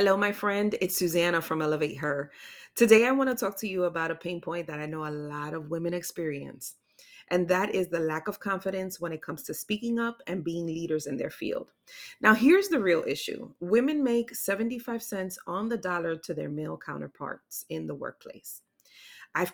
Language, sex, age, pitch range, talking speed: English, female, 30-49, 165-200 Hz, 205 wpm